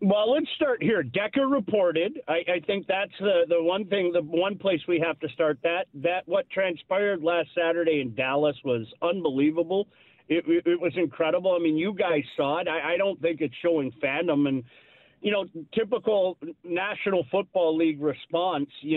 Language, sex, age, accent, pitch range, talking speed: English, male, 40-59, American, 155-200 Hz, 180 wpm